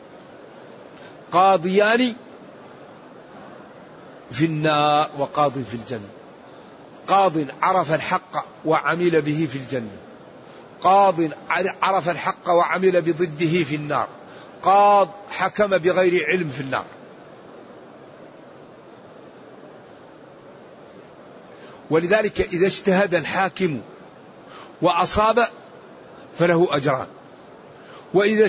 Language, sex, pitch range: Arabic, male, 165-190 Hz